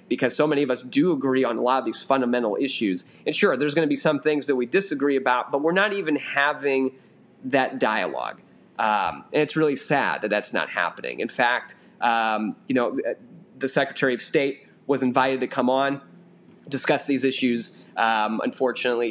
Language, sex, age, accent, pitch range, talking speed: English, male, 30-49, American, 120-150 Hz, 190 wpm